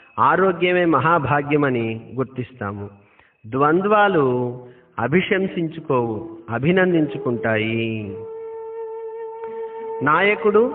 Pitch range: 135-205 Hz